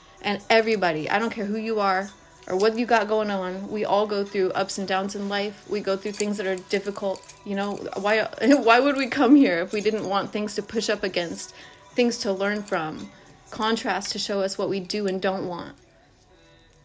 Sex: female